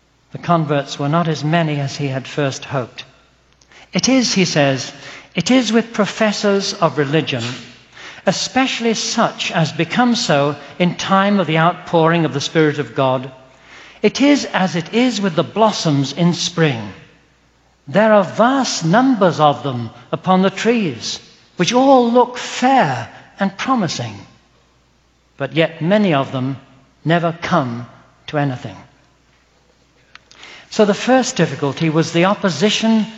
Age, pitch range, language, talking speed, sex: 60-79, 140-195 Hz, English, 140 wpm, male